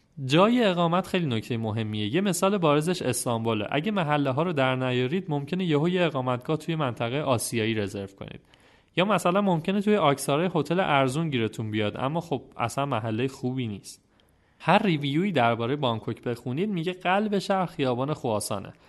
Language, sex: Persian, male